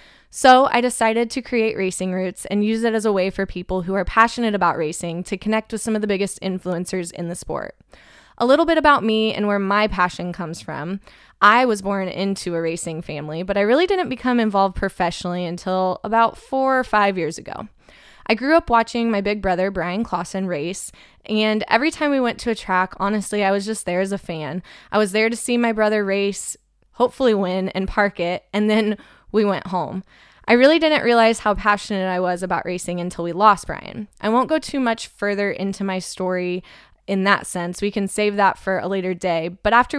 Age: 20-39